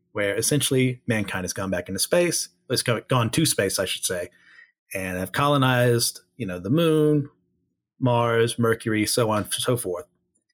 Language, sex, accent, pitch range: English, male, American, 110-130 Hz